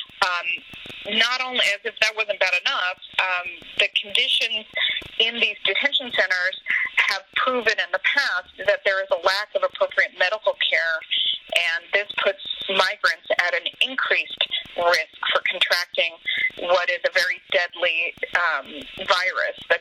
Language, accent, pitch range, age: English, American, 190-265 Hz, 30-49